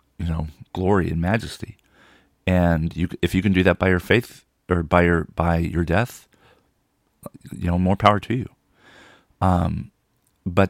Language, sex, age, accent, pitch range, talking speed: English, male, 40-59, American, 85-95 Hz, 150 wpm